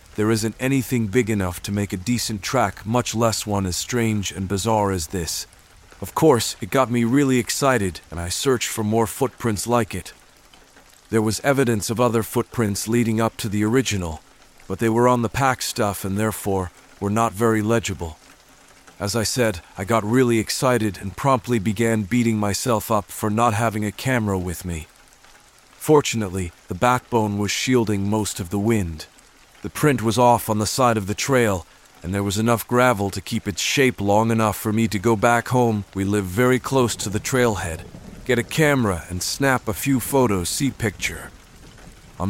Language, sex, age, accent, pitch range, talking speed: English, male, 40-59, American, 100-125 Hz, 185 wpm